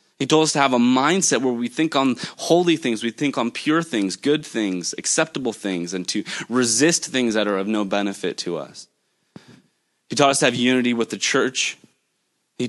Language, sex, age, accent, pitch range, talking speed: English, male, 20-39, American, 100-130 Hz, 205 wpm